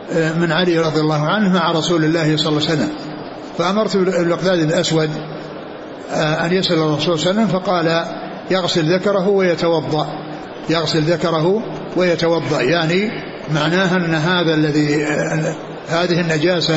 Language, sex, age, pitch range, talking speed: Arabic, male, 60-79, 160-180 Hz, 120 wpm